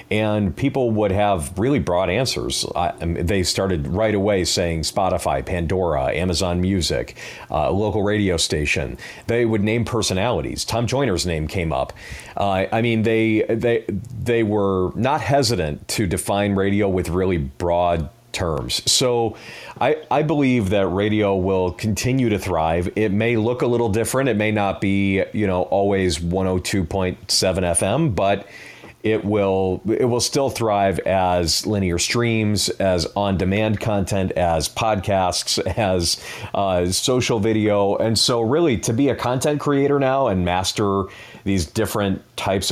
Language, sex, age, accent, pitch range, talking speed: English, male, 40-59, American, 90-110 Hz, 155 wpm